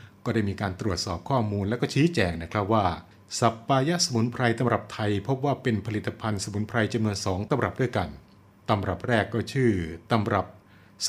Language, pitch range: Thai, 100-120 Hz